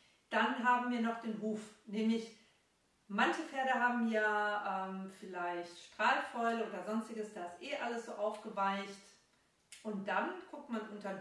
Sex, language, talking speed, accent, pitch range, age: female, German, 145 wpm, German, 205-230 Hz, 40-59